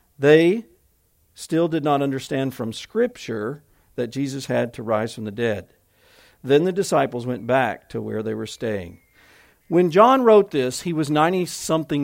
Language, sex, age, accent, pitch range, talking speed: English, male, 50-69, American, 135-220 Hz, 160 wpm